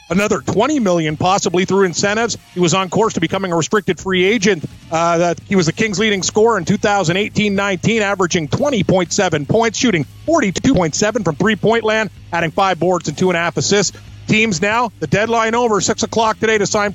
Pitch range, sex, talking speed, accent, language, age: 180-205 Hz, male, 175 wpm, American, English, 40-59